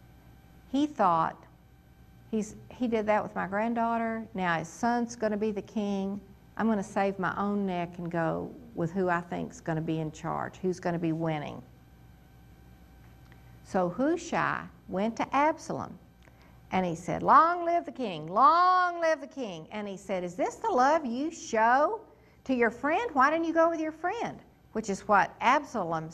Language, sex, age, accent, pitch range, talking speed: English, female, 60-79, American, 170-265 Hz, 185 wpm